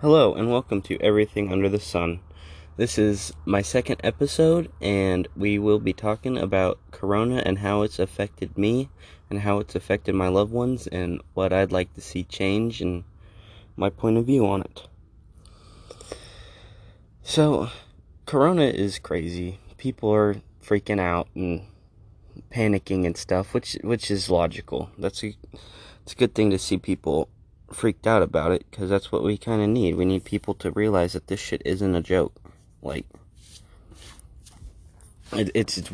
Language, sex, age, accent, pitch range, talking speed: English, male, 20-39, American, 90-105 Hz, 160 wpm